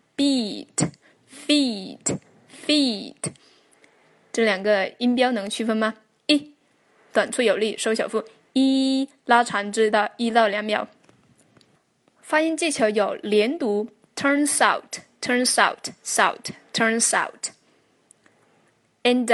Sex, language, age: female, Chinese, 10-29